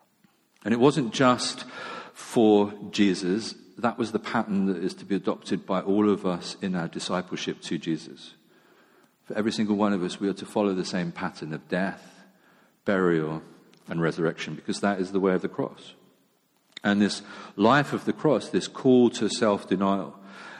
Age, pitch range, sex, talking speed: 40-59, 105-150 Hz, male, 175 wpm